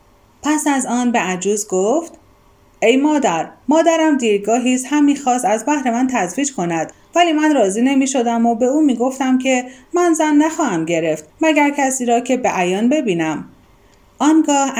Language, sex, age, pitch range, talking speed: Persian, female, 30-49, 195-295 Hz, 155 wpm